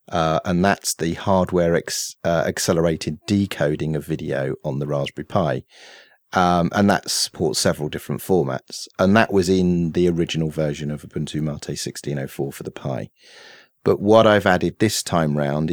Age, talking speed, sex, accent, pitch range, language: 30-49, 160 wpm, male, British, 80-95 Hz, English